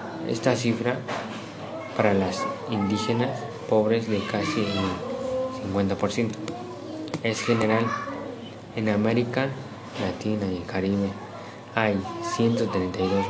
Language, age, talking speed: Spanish, 20-39, 90 wpm